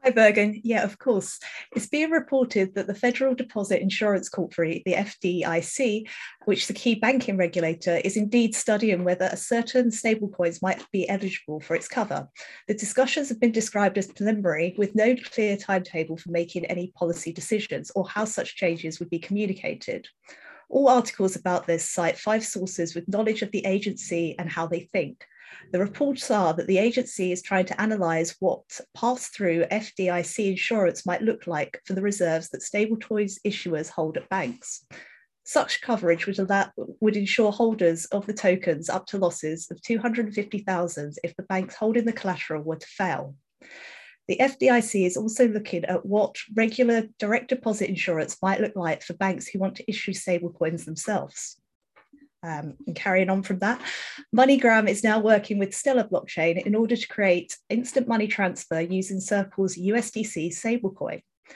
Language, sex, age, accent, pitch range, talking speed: English, female, 30-49, British, 180-225 Hz, 170 wpm